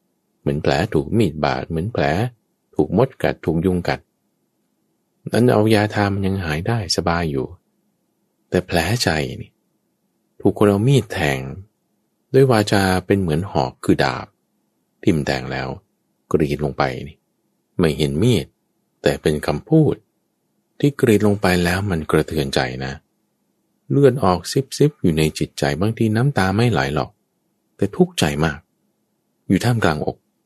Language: English